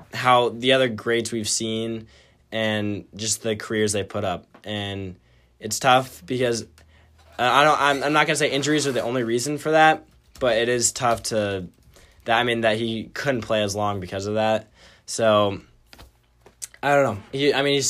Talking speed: 190 wpm